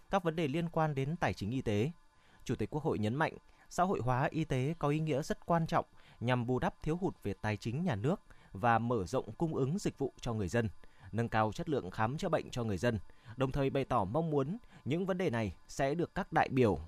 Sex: male